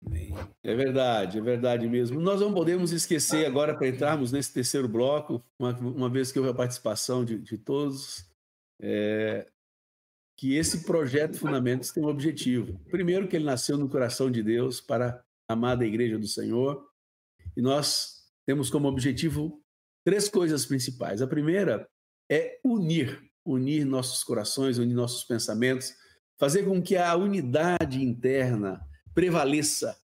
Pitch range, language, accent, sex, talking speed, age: 120-155 Hz, Portuguese, Brazilian, male, 145 wpm, 60-79